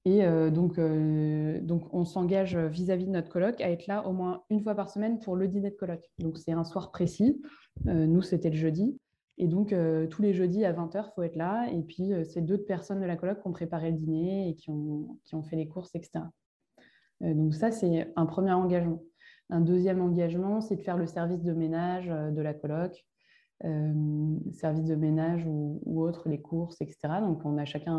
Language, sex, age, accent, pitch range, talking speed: French, female, 20-39, French, 160-185 Hz, 225 wpm